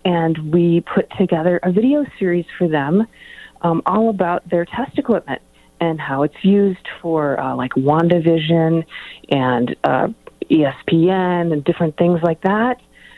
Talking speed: 140 wpm